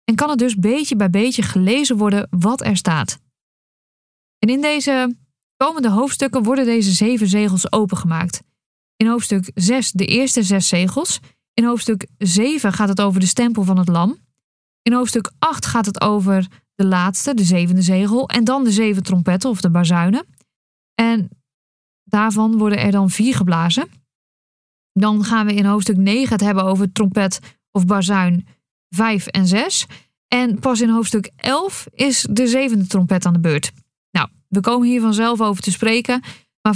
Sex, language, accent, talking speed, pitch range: female, Dutch, Dutch, 165 wpm, 190-240 Hz